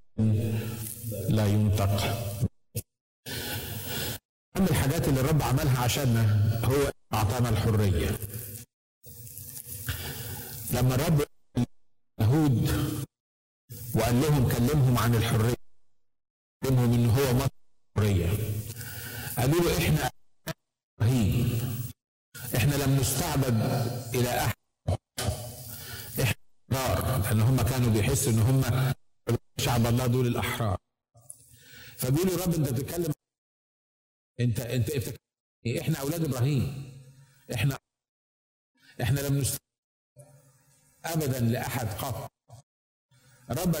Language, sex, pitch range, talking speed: Arabic, male, 115-135 Hz, 85 wpm